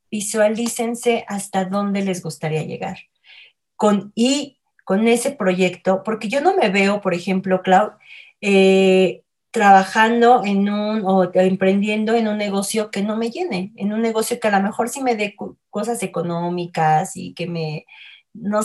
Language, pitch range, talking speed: Spanish, 180-215 Hz, 160 wpm